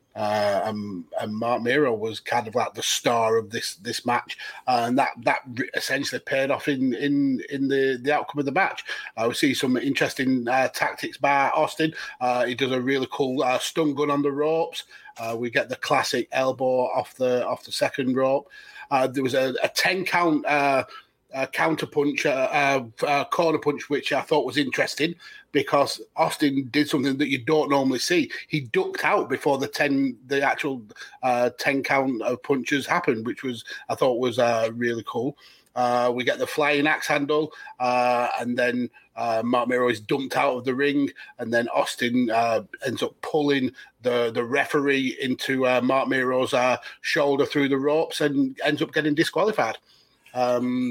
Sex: male